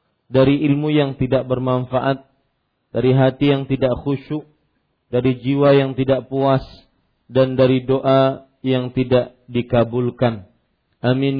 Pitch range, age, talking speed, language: 125-150 Hz, 40-59, 115 wpm, Malay